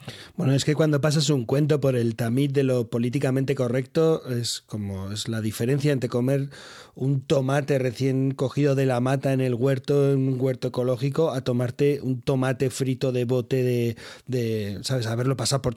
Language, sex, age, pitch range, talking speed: Spanish, male, 30-49, 125-145 Hz, 185 wpm